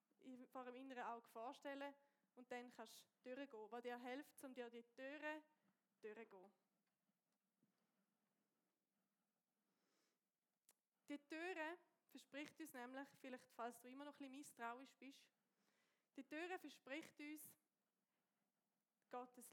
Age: 20-39